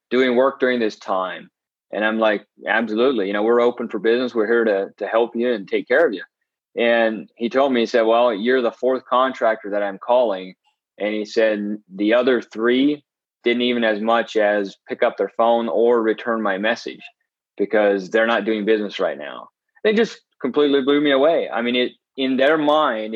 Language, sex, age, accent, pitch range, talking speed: English, male, 30-49, American, 110-130 Hz, 200 wpm